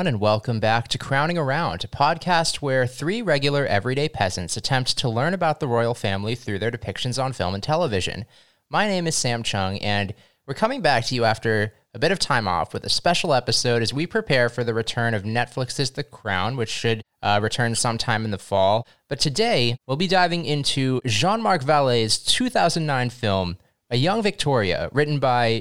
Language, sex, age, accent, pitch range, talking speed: English, male, 20-39, American, 115-155 Hz, 190 wpm